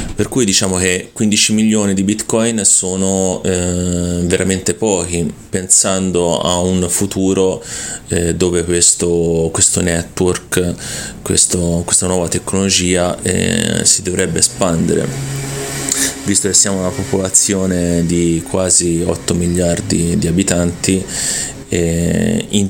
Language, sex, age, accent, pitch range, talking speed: Italian, male, 30-49, native, 85-95 Hz, 110 wpm